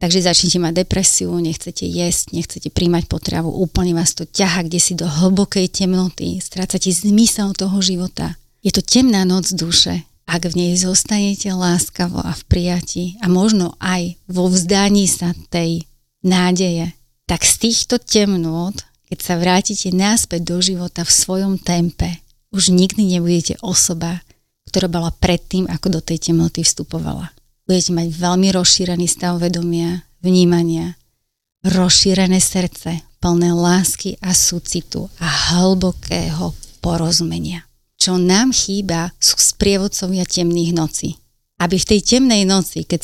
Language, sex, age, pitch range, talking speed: Slovak, female, 30-49, 170-190 Hz, 135 wpm